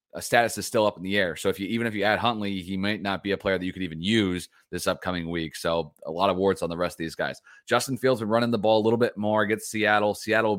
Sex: male